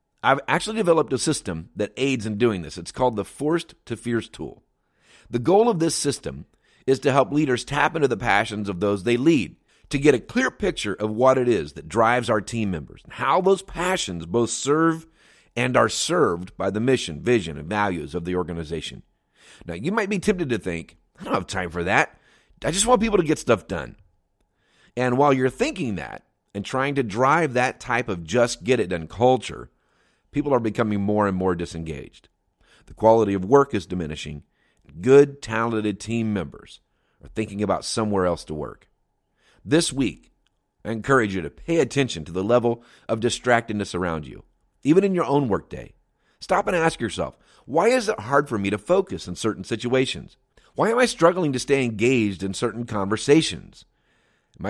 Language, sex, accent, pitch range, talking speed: English, male, American, 95-140 Hz, 190 wpm